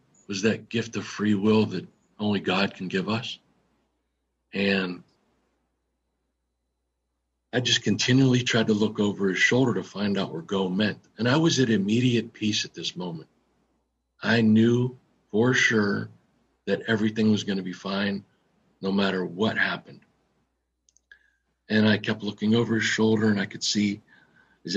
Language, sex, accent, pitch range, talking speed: English, male, American, 95-110 Hz, 155 wpm